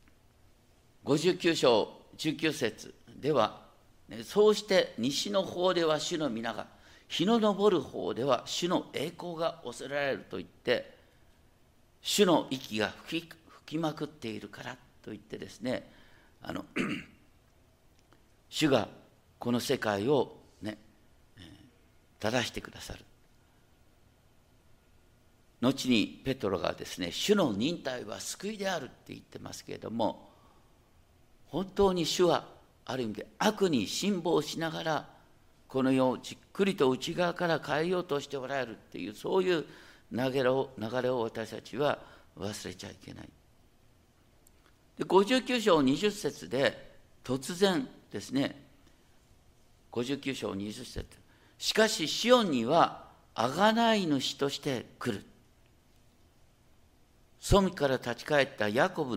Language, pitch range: Japanese, 120-185 Hz